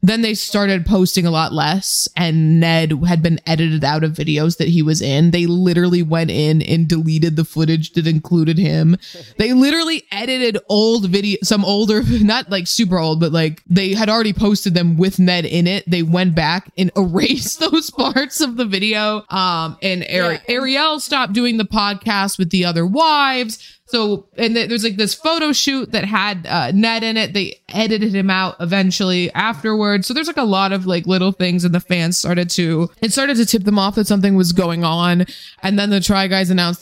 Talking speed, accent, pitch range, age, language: 200 wpm, American, 165-215 Hz, 20-39, English